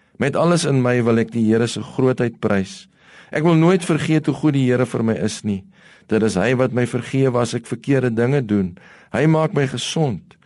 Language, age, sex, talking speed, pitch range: English, 50-69, male, 220 wpm, 115-150 Hz